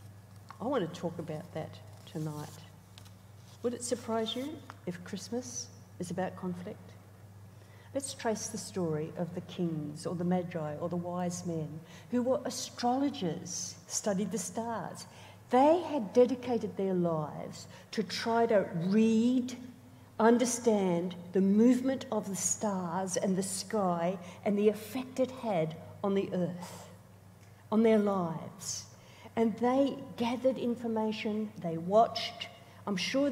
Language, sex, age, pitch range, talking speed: English, female, 50-69, 165-235 Hz, 130 wpm